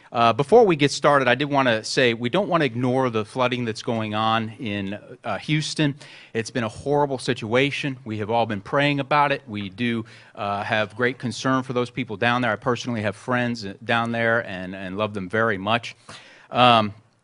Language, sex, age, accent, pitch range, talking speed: English, male, 40-59, American, 115-145 Hz, 205 wpm